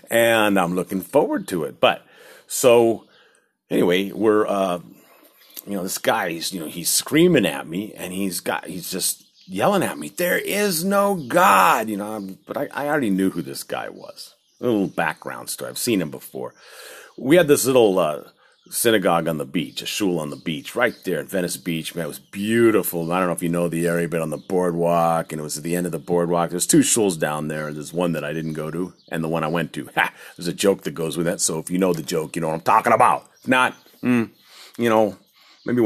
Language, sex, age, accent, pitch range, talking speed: English, male, 40-59, American, 85-110 Hz, 240 wpm